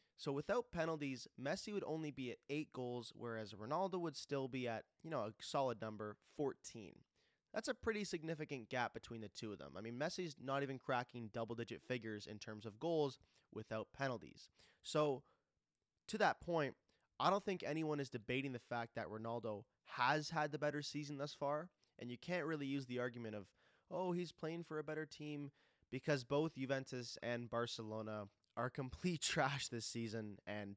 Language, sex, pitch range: English, male, 115-150 Hz